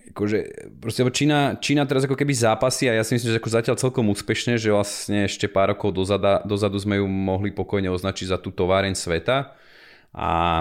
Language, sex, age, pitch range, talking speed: Slovak, male, 30-49, 90-105 Hz, 180 wpm